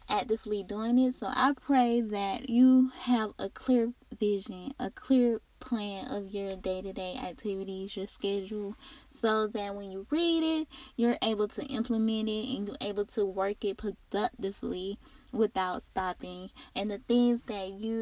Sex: female